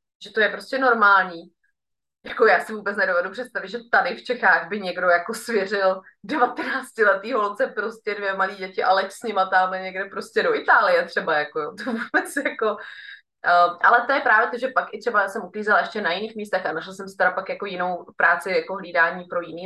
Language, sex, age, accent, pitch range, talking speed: Czech, female, 20-39, native, 185-235 Hz, 205 wpm